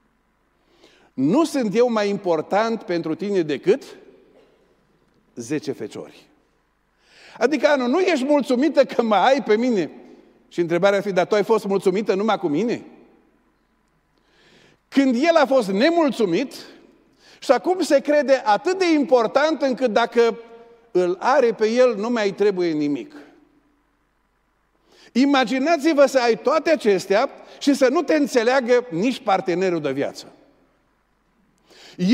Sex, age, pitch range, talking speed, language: male, 50-69, 210-275 Hz, 125 wpm, Romanian